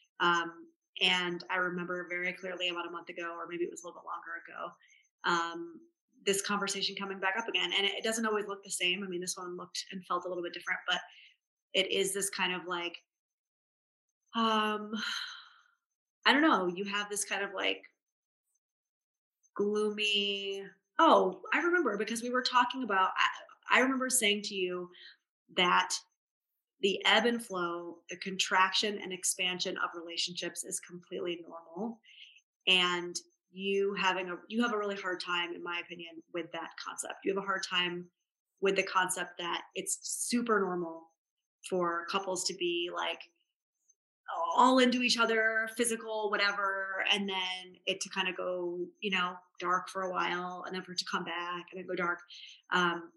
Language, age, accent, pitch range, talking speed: English, 20-39, American, 180-215 Hz, 175 wpm